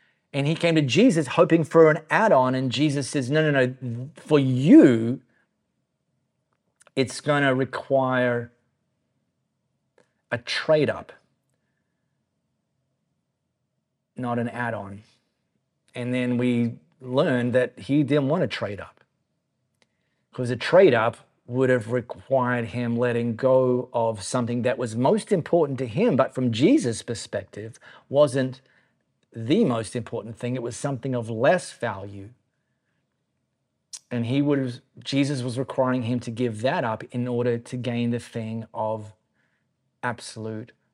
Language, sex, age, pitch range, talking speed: English, male, 30-49, 120-145 Hz, 125 wpm